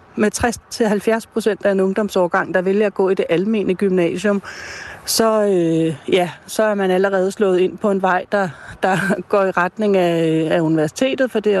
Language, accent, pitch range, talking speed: Danish, native, 175-205 Hz, 185 wpm